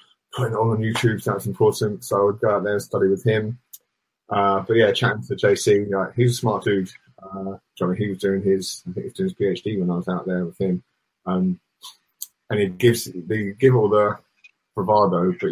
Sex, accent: male, British